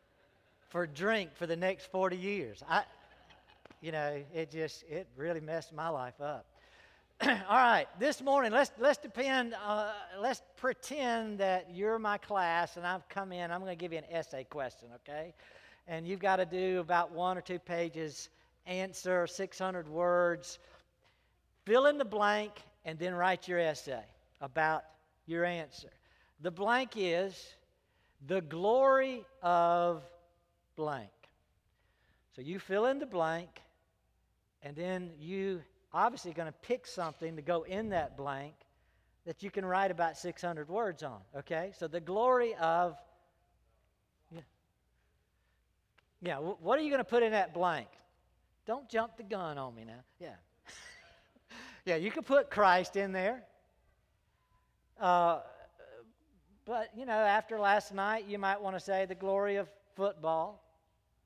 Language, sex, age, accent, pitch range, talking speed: English, male, 60-79, American, 160-205 Hz, 155 wpm